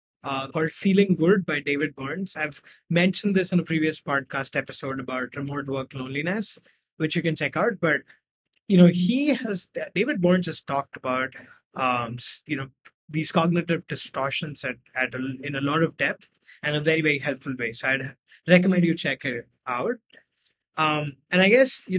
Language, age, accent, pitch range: English, 20-39, Indian, 140-180 Hz